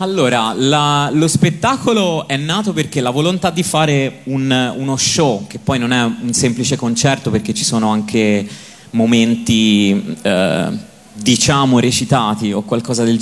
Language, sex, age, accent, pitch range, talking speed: Italian, male, 30-49, native, 115-140 Hz, 135 wpm